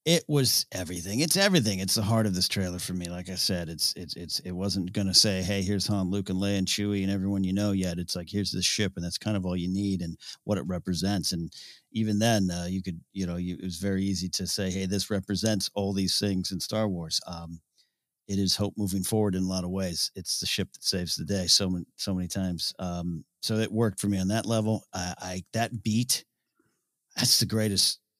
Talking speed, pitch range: 245 wpm, 90-110 Hz